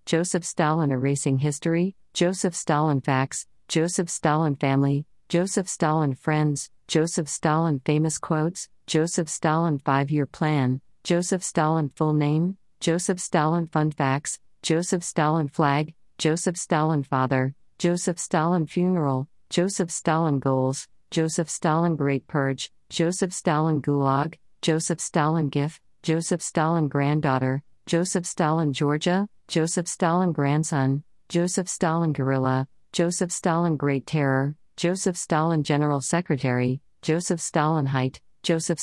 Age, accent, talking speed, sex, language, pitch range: 50-69, American, 115 wpm, female, English, 140-175 Hz